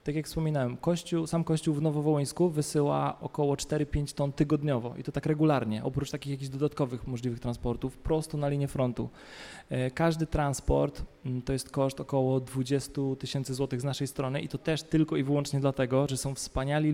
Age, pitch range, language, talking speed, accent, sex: 20-39, 130-155 Hz, Polish, 170 wpm, native, male